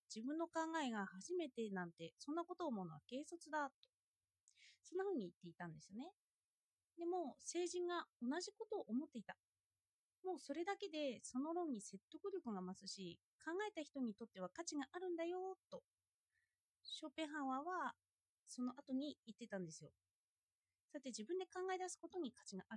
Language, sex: Japanese, female